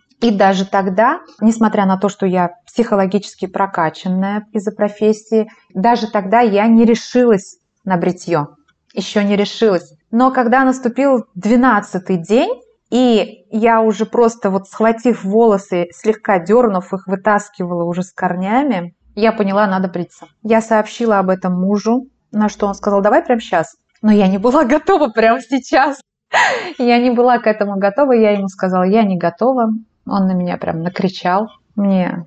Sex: female